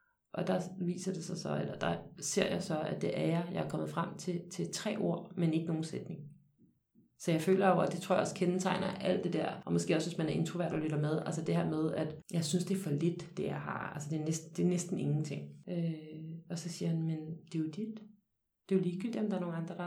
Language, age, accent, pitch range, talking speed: Danish, 30-49, native, 165-190 Hz, 285 wpm